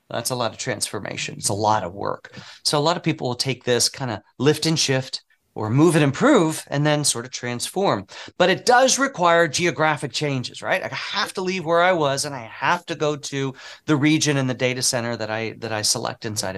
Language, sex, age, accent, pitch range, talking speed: English, male, 40-59, American, 120-160 Hz, 230 wpm